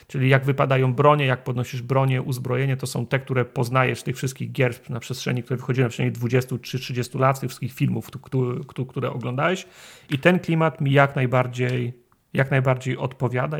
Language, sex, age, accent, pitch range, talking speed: Polish, male, 40-59, native, 125-140 Hz, 170 wpm